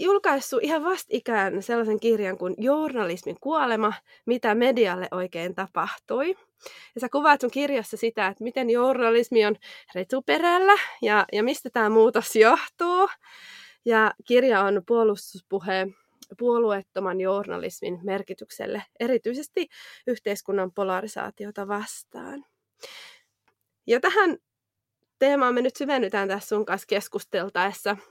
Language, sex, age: Finnish, female, 20-39